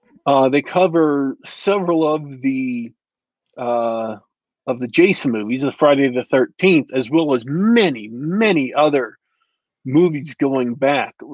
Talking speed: 125 wpm